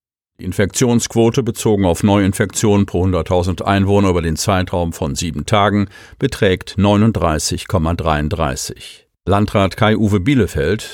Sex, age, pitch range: male, 50-69, 90-110 Hz